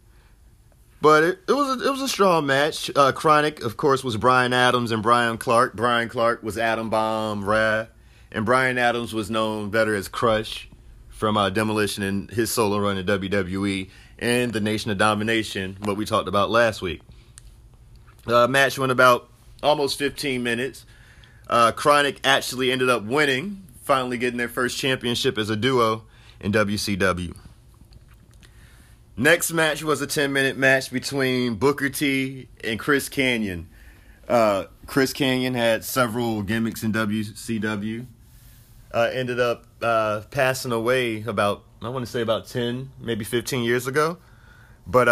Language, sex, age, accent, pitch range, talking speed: English, male, 30-49, American, 110-130 Hz, 155 wpm